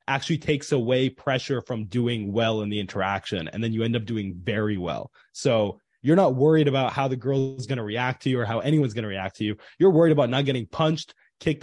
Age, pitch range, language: 20-39, 110-140 Hz, English